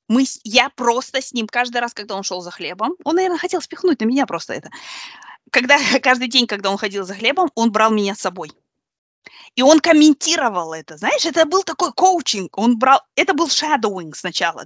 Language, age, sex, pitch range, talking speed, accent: Russian, 20-39, female, 215-320 Hz, 195 wpm, native